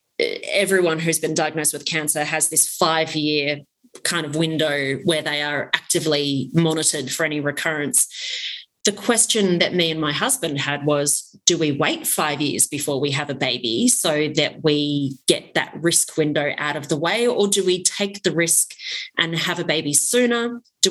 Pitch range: 155-205 Hz